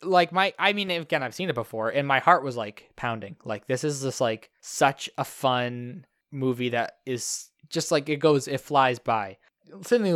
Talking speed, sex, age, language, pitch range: 200 wpm, male, 20-39, English, 115-145 Hz